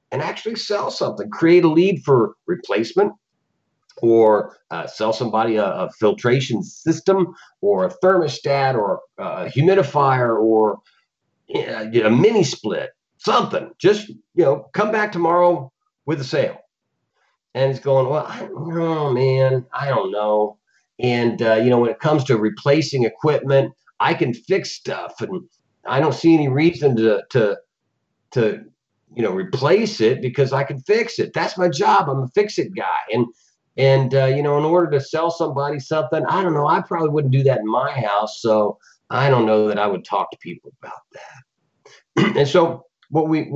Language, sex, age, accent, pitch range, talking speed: English, male, 50-69, American, 125-170 Hz, 170 wpm